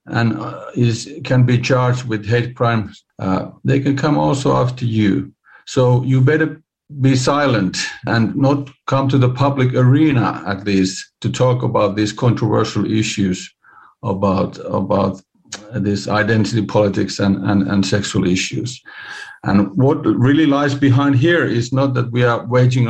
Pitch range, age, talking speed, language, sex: 115-135 Hz, 50-69, 150 wpm, English, male